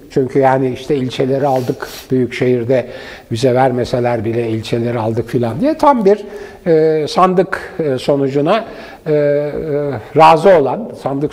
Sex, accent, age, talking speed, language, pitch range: male, native, 60-79, 125 wpm, Turkish, 130-195 Hz